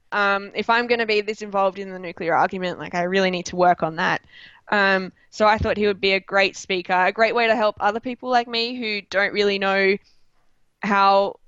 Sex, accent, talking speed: female, Australian, 230 wpm